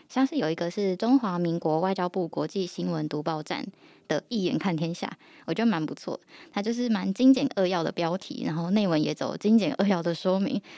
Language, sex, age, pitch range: Chinese, female, 10-29, 180-260 Hz